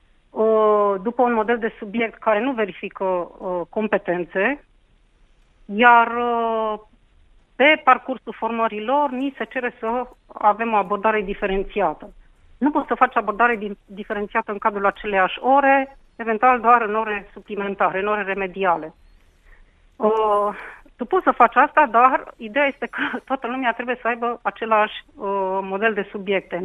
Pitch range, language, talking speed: 205-250 Hz, Romanian, 130 wpm